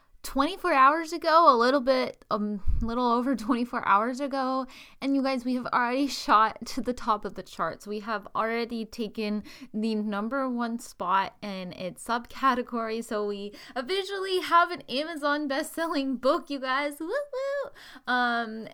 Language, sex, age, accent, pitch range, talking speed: English, female, 10-29, American, 205-270 Hz, 155 wpm